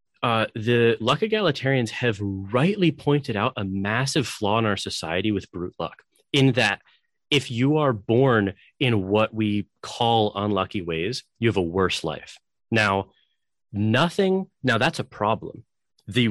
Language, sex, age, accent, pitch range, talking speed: English, male, 30-49, American, 100-130 Hz, 145 wpm